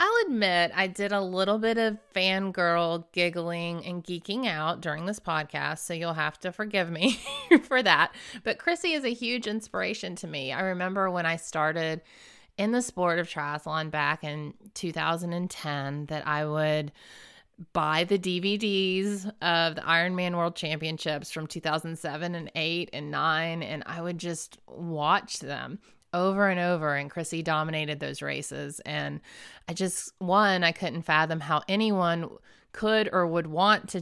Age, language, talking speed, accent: 30-49, English, 160 wpm, American